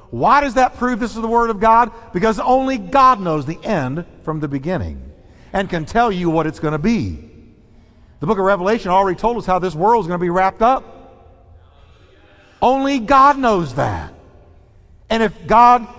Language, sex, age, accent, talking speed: English, male, 50-69, American, 190 wpm